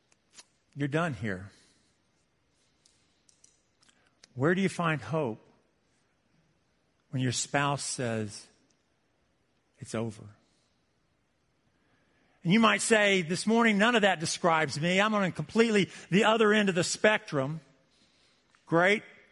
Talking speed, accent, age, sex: 110 wpm, American, 50-69, male